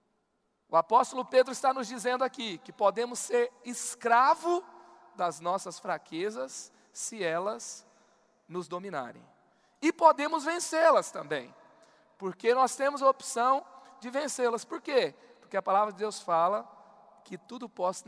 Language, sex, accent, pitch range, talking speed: Portuguese, male, Brazilian, 205-275 Hz, 135 wpm